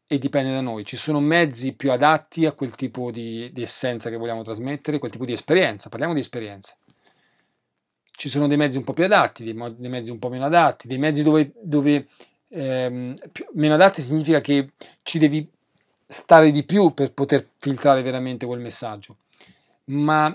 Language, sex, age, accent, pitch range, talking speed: Italian, male, 40-59, native, 130-170 Hz, 185 wpm